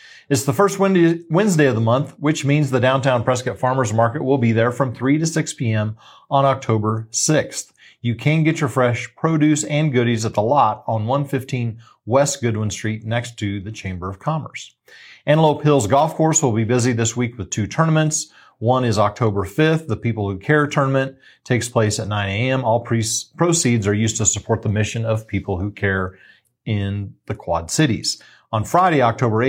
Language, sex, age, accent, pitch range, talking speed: English, male, 40-59, American, 110-140 Hz, 185 wpm